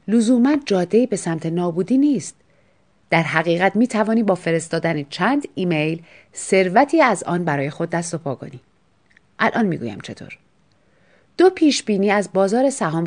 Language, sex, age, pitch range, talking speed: Persian, female, 40-59, 165-245 Hz, 140 wpm